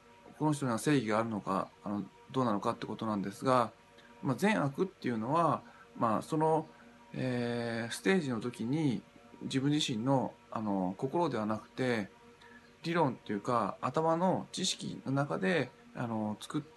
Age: 20-39